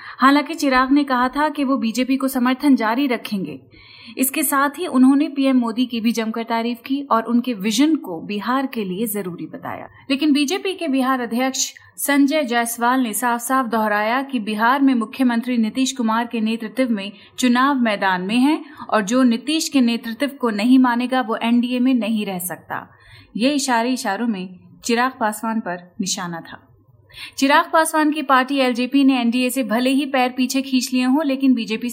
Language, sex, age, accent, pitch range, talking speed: Hindi, female, 30-49, native, 225-275 Hz, 180 wpm